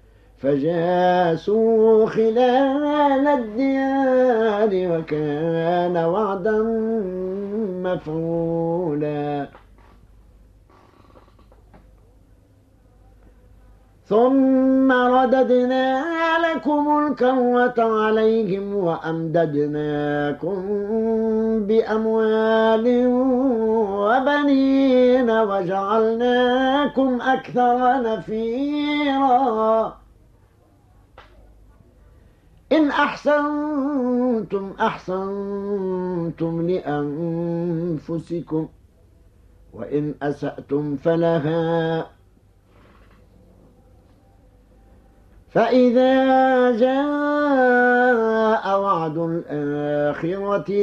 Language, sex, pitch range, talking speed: Arabic, male, 145-240 Hz, 35 wpm